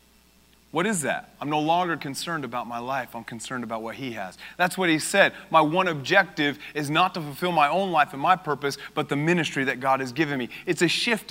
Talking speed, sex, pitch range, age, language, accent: 235 wpm, male, 115-190 Hz, 30-49, English, American